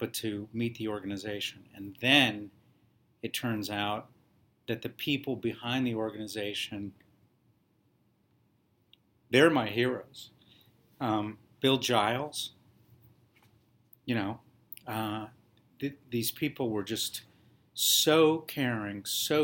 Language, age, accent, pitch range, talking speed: English, 50-69, American, 105-120 Hz, 100 wpm